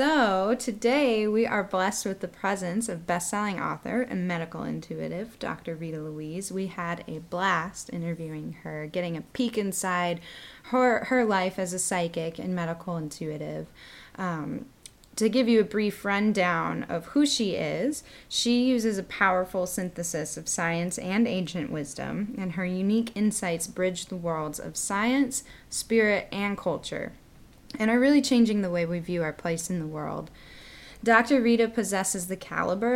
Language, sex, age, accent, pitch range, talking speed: English, female, 10-29, American, 175-220 Hz, 160 wpm